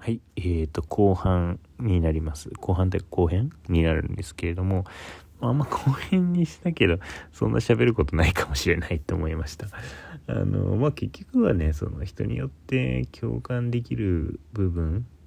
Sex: male